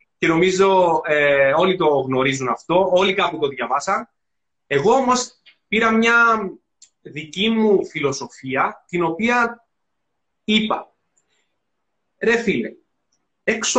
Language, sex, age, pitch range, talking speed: Greek, male, 30-49, 185-235 Hz, 105 wpm